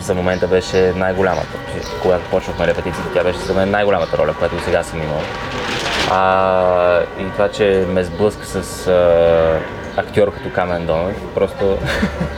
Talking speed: 140 wpm